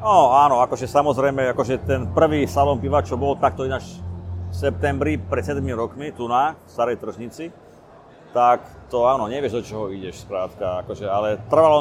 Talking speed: 170 wpm